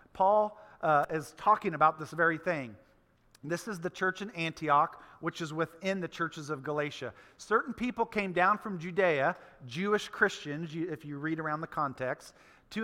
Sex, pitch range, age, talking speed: male, 160-210 Hz, 40-59, 170 wpm